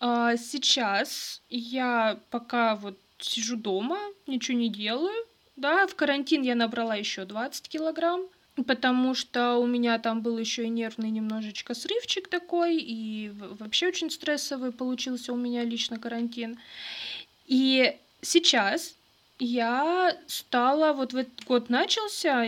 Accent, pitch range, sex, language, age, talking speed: native, 235-315 Hz, female, Russian, 20-39, 125 wpm